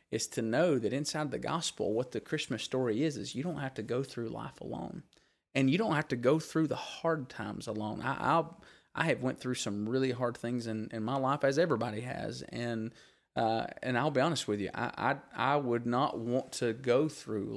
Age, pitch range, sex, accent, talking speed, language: 30-49, 110-135 Hz, male, American, 225 wpm, English